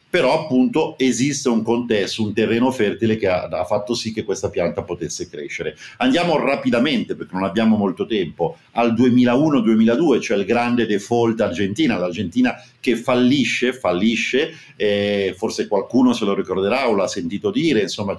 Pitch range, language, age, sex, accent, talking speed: 105-135 Hz, Italian, 50-69, male, native, 155 wpm